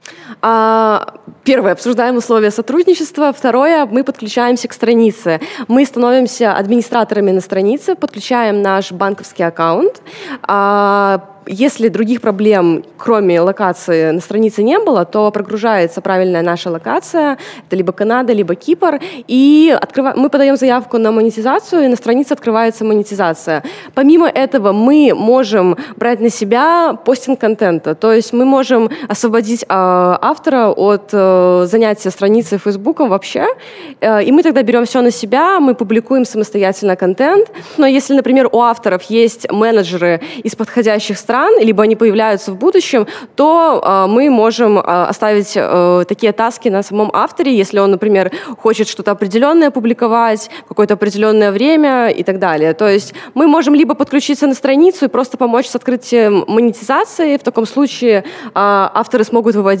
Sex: female